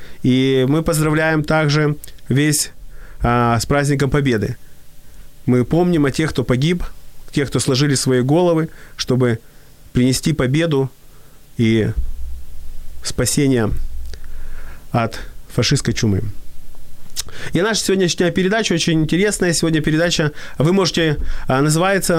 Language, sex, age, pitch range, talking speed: Ukrainian, male, 30-49, 135-170 Hz, 105 wpm